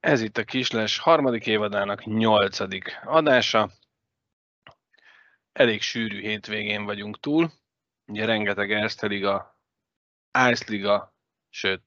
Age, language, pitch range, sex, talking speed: 20-39, Hungarian, 100-115 Hz, male, 100 wpm